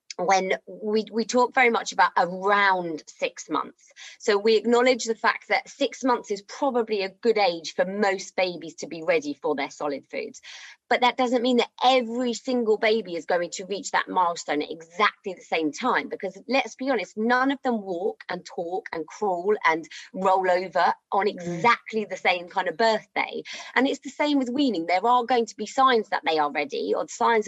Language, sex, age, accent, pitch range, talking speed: English, female, 30-49, British, 180-250 Hz, 200 wpm